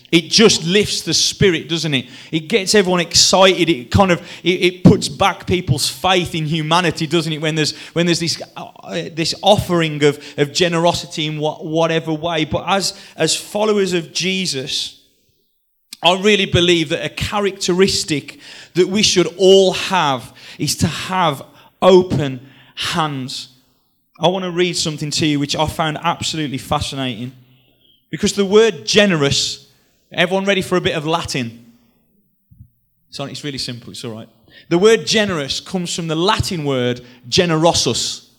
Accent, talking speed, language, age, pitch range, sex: British, 155 wpm, English, 30-49, 135-180 Hz, male